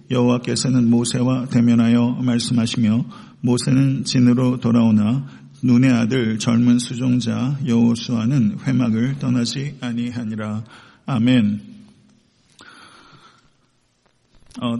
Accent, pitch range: native, 115-125 Hz